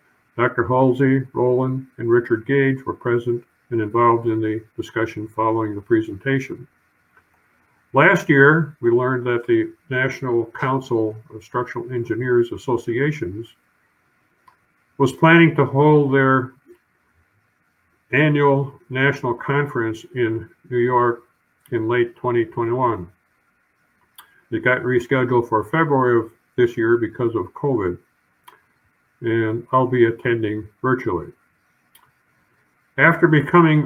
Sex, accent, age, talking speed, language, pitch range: male, American, 50-69, 105 wpm, English, 115-140 Hz